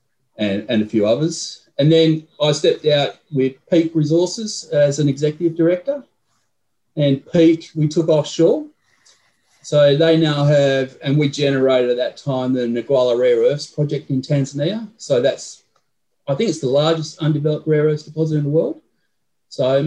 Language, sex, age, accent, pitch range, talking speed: English, male, 30-49, Australian, 125-155 Hz, 165 wpm